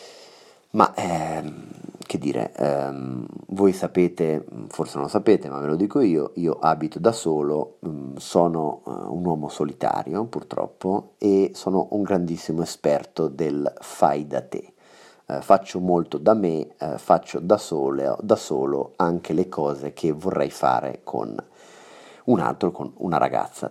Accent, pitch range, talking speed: native, 75-100 Hz, 150 wpm